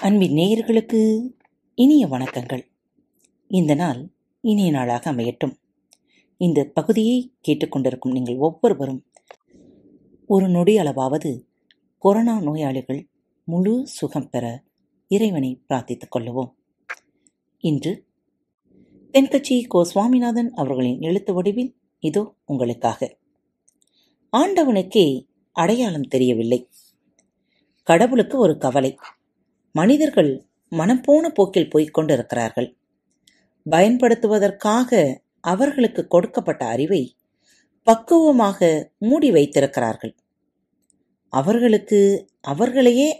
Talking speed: 75 wpm